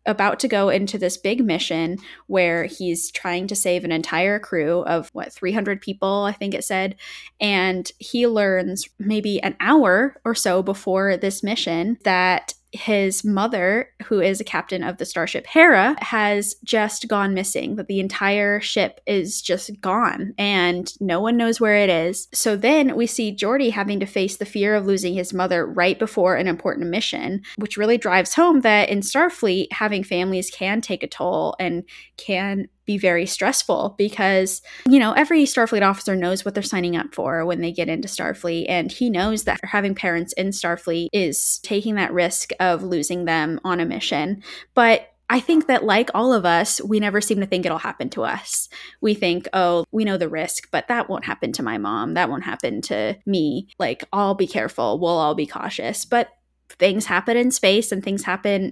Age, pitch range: 10-29, 185-215 Hz